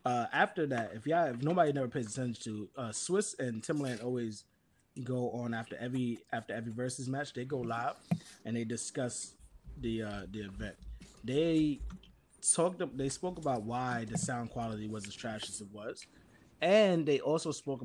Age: 20-39